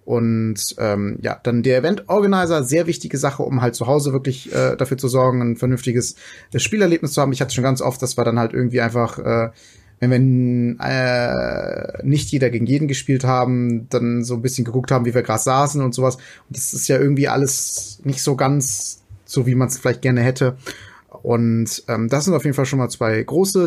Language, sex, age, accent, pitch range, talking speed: German, male, 20-39, German, 120-135 Hz, 215 wpm